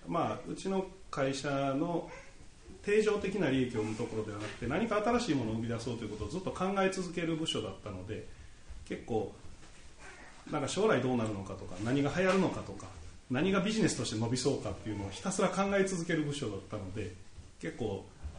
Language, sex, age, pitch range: Japanese, male, 30-49, 105-150 Hz